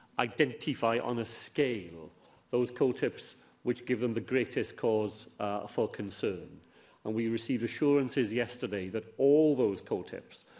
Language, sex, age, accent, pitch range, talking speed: English, male, 40-59, British, 110-130 Hz, 135 wpm